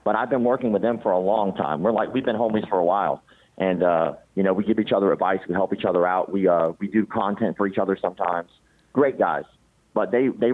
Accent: American